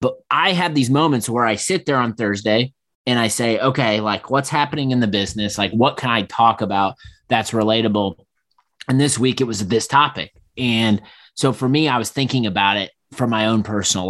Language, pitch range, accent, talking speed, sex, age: English, 105-125 Hz, American, 210 wpm, male, 30-49